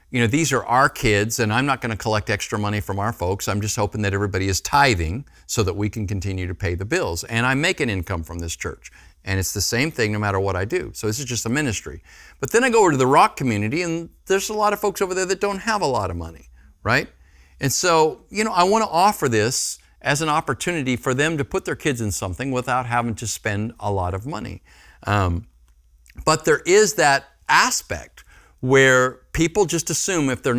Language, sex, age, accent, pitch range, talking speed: English, male, 50-69, American, 95-160 Hz, 240 wpm